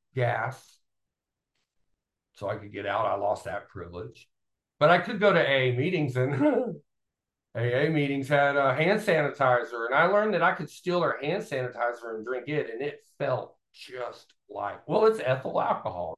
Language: English